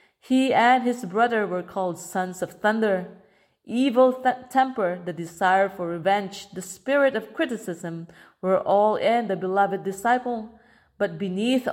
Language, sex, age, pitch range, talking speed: English, female, 30-49, 185-235 Hz, 140 wpm